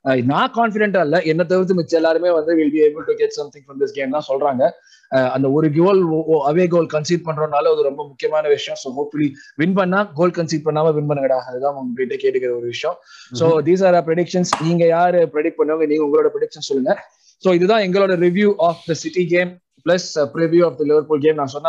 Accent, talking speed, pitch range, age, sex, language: native, 65 wpm, 150-185 Hz, 20-39, male, Tamil